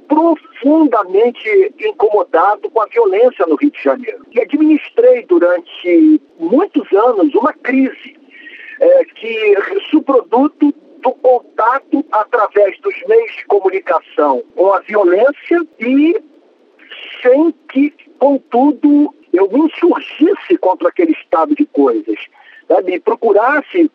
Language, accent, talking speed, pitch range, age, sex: Portuguese, Brazilian, 110 wpm, 245-400 Hz, 50-69, male